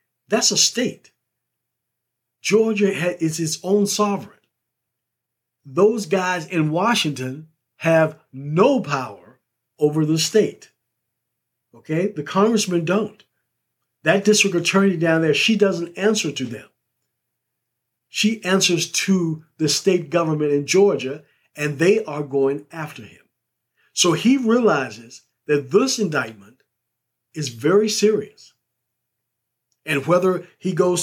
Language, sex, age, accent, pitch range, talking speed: English, male, 50-69, American, 140-205 Hz, 115 wpm